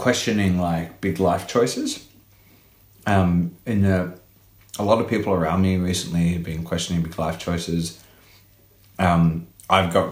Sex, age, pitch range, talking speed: male, 30-49, 85-100 Hz, 140 wpm